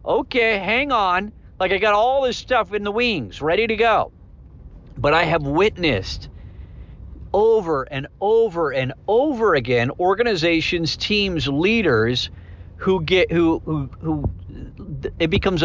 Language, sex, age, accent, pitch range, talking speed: English, male, 50-69, American, 140-225 Hz, 135 wpm